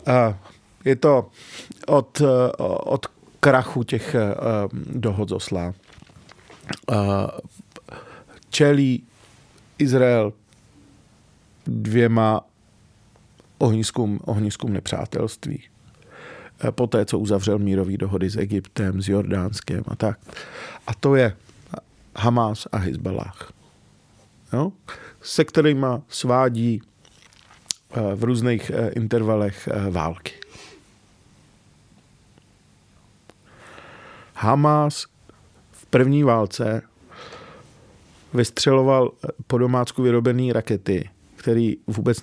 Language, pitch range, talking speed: Czech, 105-130 Hz, 70 wpm